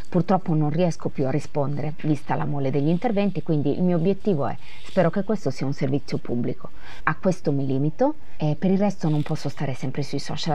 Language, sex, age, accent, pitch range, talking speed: Italian, female, 30-49, native, 140-180 Hz, 210 wpm